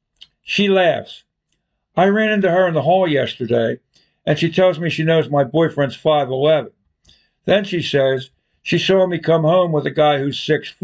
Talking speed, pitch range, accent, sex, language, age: 170 wpm, 145-180 Hz, American, male, English, 60-79